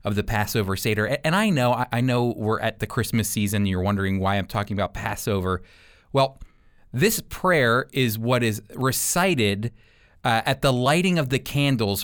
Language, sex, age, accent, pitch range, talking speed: English, male, 30-49, American, 105-155 Hz, 175 wpm